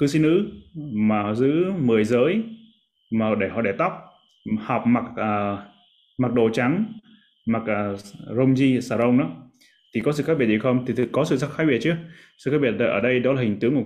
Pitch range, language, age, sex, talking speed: 105-130 Hz, Vietnamese, 20-39, male, 210 wpm